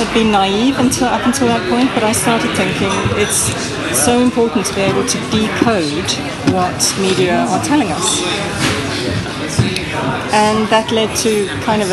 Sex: female